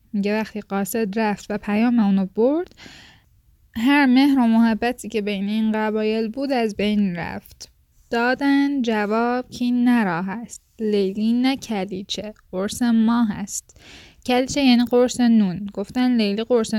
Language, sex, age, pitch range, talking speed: Persian, female, 10-29, 205-250 Hz, 135 wpm